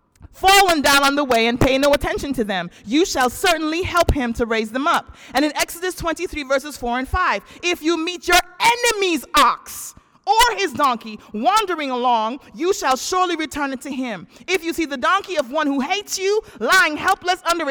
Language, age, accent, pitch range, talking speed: English, 30-49, American, 240-360 Hz, 200 wpm